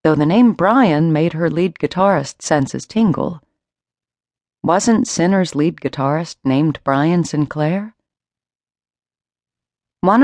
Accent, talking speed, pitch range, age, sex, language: American, 105 wpm, 130-175 Hz, 40-59, female, English